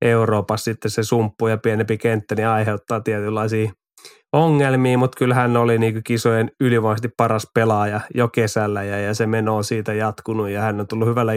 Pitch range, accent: 110-120 Hz, native